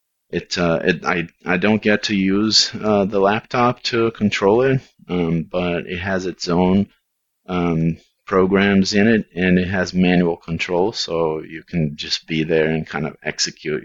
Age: 30-49